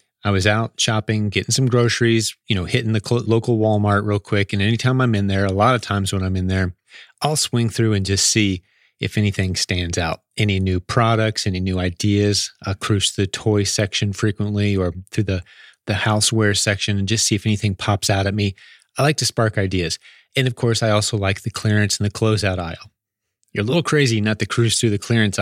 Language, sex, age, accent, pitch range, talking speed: English, male, 30-49, American, 100-115 Hz, 215 wpm